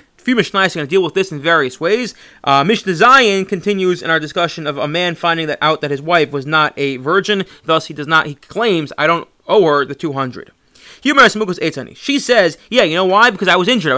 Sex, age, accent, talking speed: male, 30-49, American, 240 wpm